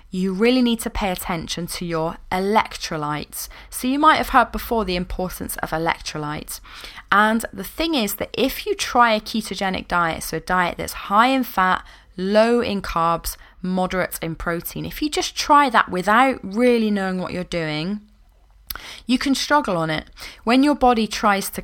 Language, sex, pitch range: English, female, 175-225 Hz